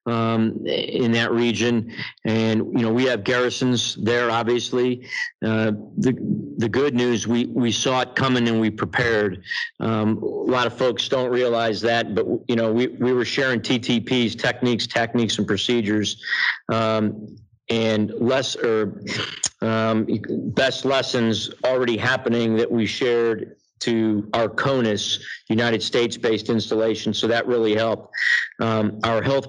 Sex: male